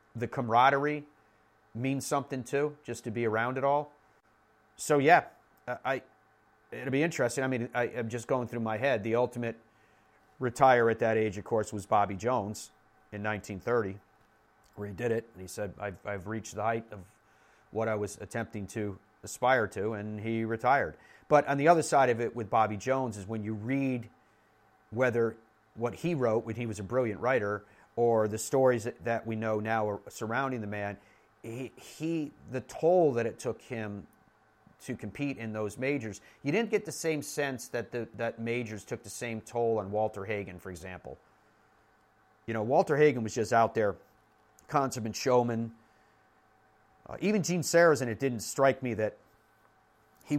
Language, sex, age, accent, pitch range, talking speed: English, male, 40-59, American, 110-130 Hz, 175 wpm